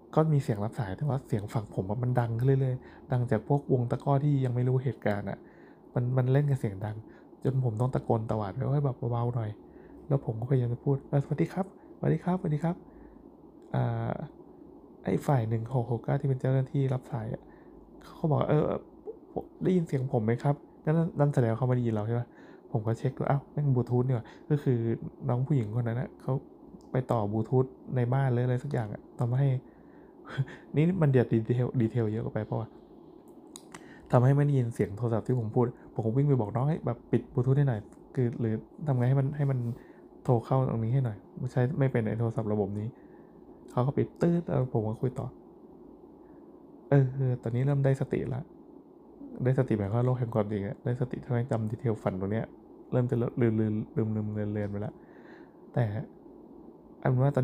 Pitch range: 115-145 Hz